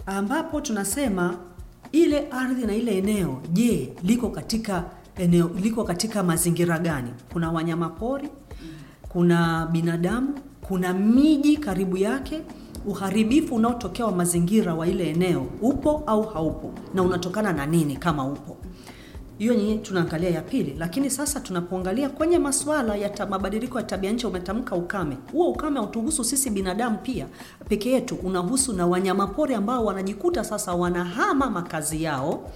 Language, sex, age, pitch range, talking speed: English, female, 40-59, 170-230 Hz, 135 wpm